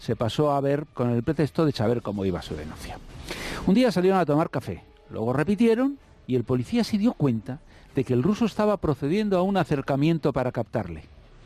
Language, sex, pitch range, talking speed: Spanish, male, 120-175 Hz, 200 wpm